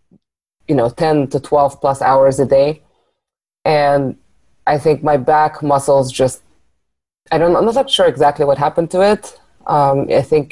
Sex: female